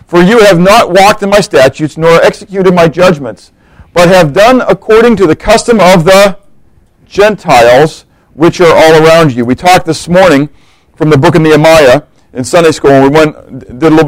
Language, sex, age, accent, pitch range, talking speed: English, male, 50-69, American, 165-215 Hz, 190 wpm